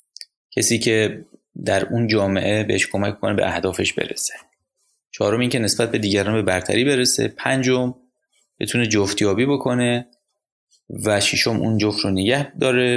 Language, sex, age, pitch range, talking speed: Persian, male, 20-39, 105-130 Hz, 145 wpm